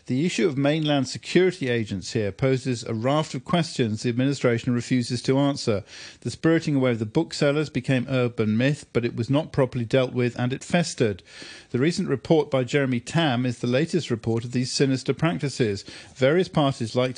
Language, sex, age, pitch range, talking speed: English, male, 50-69, 120-145 Hz, 185 wpm